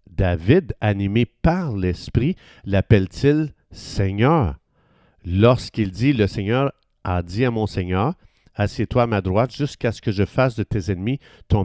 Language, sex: French, male